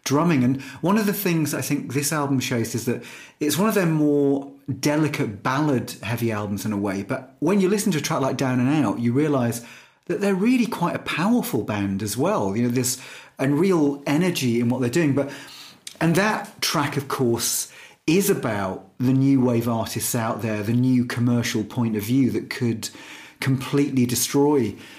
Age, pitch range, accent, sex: 40-59, 120-150 Hz, British, male